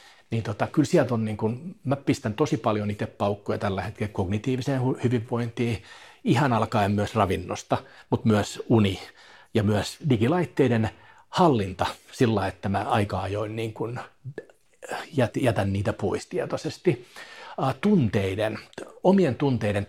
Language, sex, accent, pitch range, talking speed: Finnish, male, native, 105-130 Hz, 130 wpm